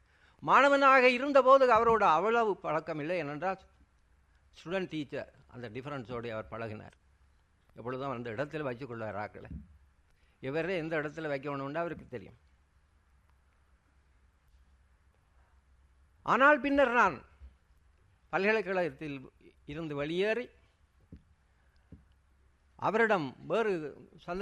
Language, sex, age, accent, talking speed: English, male, 60-79, Indian, 45 wpm